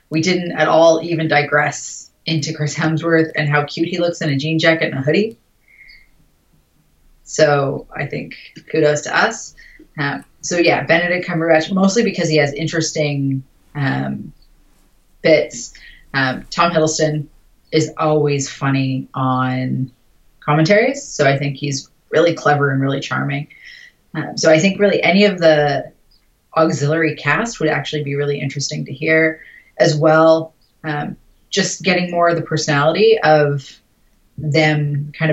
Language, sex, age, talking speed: English, female, 30-49, 145 wpm